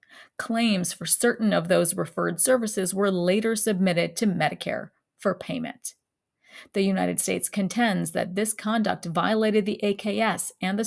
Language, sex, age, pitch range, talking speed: English, female, 40-59, 185-215 Hz, 145 wpm